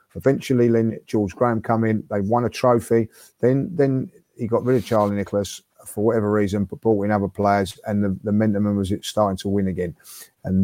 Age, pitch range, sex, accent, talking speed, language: 30-49, 105-130 Hz, male, British, 195 wpm, English